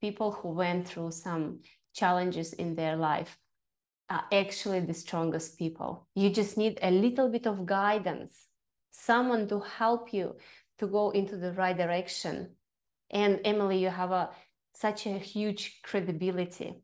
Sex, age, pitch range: female, 20-39, 175-205 Hz